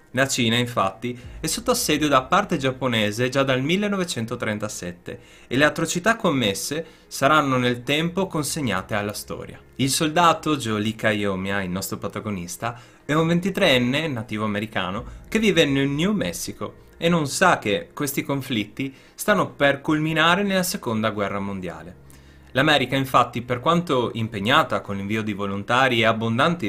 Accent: native